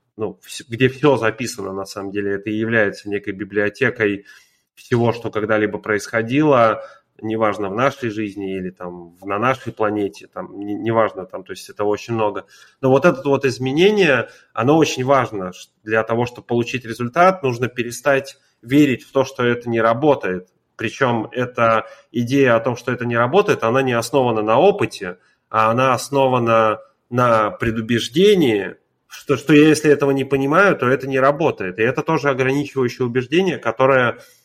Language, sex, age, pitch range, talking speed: Russian, male, 30-49, 110-135 Hz, 155 wpm